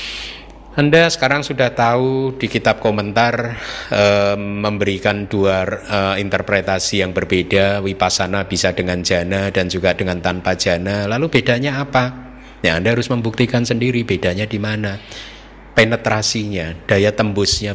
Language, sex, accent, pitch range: Indonesian, male, native, 100-125 Hz